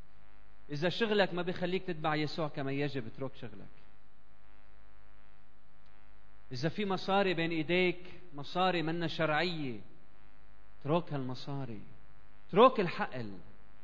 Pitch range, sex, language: 110-170 Hz, male, Arabic